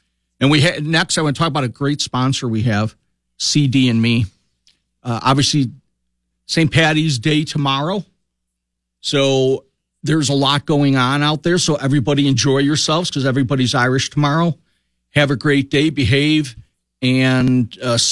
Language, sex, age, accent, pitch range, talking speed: English, male, 50-69, American, 115-140 Hz, 145 wpm